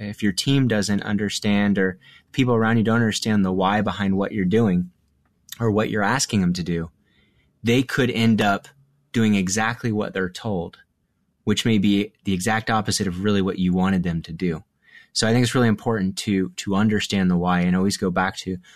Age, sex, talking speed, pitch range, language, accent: 30-49, male, 200 wpm, 95-115 Hz, English, American